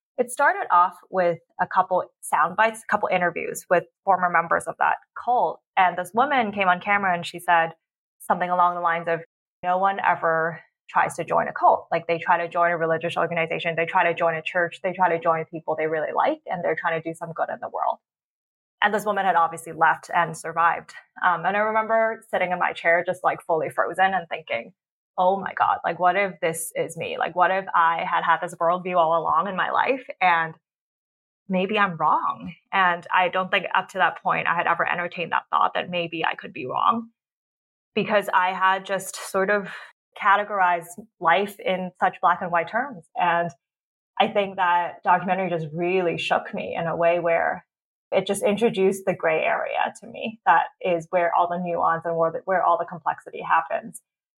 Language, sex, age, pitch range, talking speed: English, female, 20-39, 170-195 Hz, 205 wpm